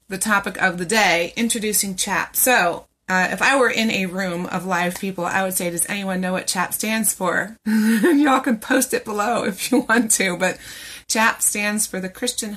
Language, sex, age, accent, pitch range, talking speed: English, female, 30-49, American, 175-230 Hz, 205 wpm